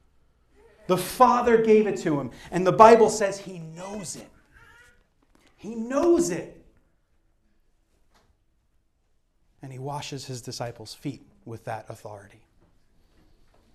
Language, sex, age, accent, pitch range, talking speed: English, male, 30-49, American, 150-215 Hz, 110 wpm